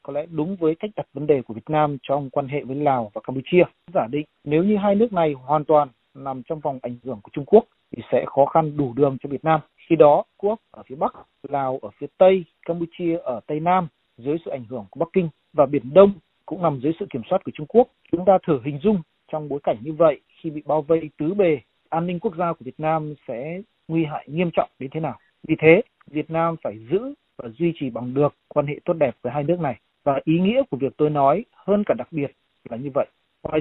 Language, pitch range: Vietnamese, 140-170 Hz